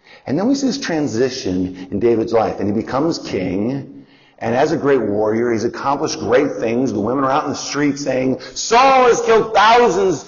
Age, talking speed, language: 50-69, 200 wpm, English